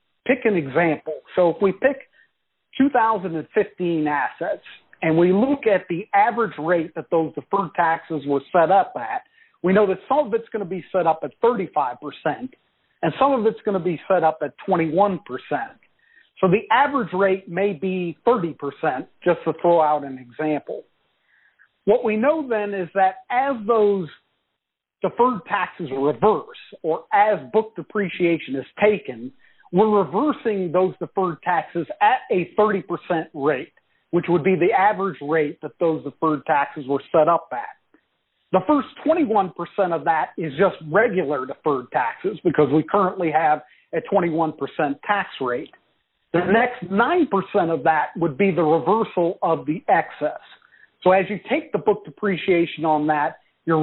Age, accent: 50-69, American